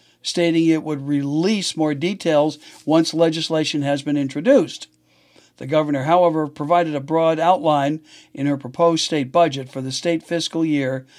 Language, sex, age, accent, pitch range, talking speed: English, male, 60-79, American, 145-185 Hz, 150 wpm